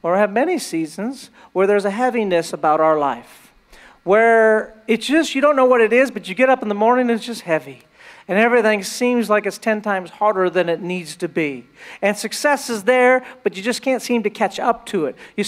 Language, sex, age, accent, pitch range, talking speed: English, male, 40-59, American, 205-245 Hz, 235 wpm